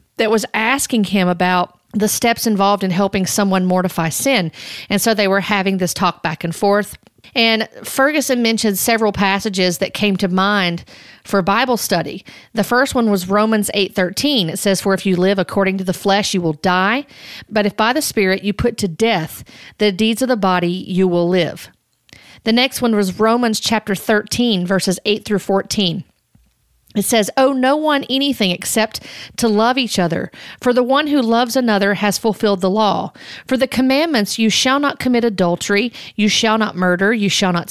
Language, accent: English, American